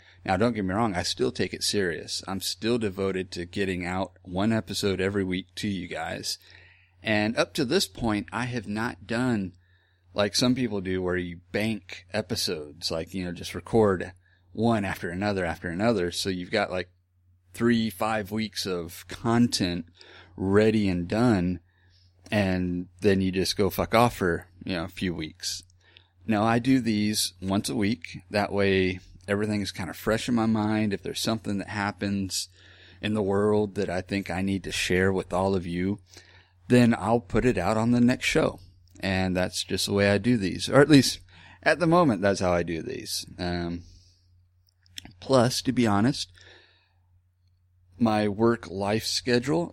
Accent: American